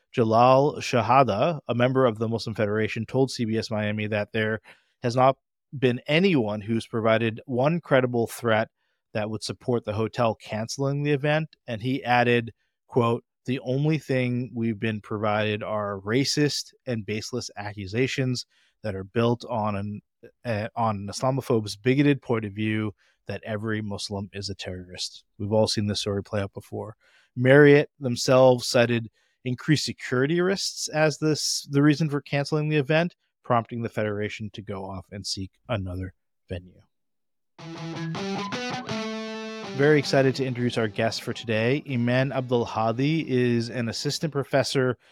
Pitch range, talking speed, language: 110-135 Hz, 150 wpm, English